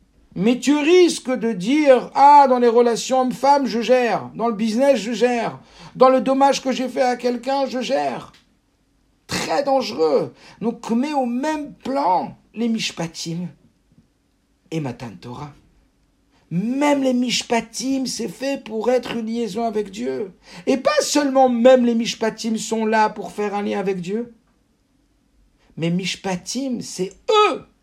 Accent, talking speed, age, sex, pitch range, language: French, 145 wpm, 60-79, male, 210-265 Hz, French